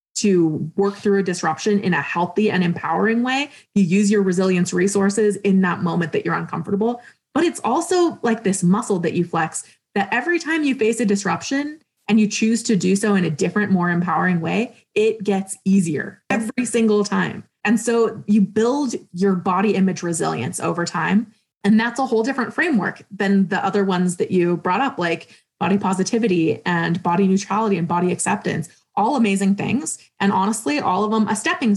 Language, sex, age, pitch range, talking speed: English, female, 20-39, 180-220 Hz, 185 wpm